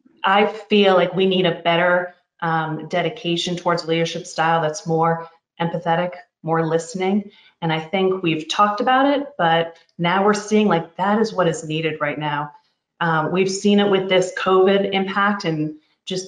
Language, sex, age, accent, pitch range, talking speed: English, female, 30-49, American, 165-200 Hz, 170 wpm